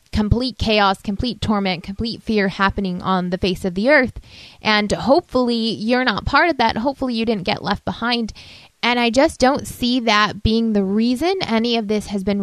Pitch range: 195-235 Hz